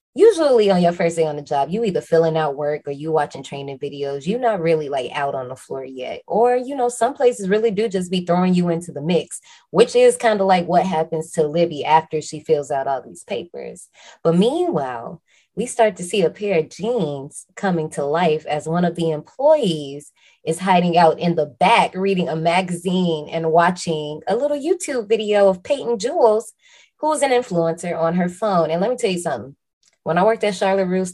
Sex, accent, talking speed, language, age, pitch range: female, American, 215 wpm, English, 20-39, 155-195 Hz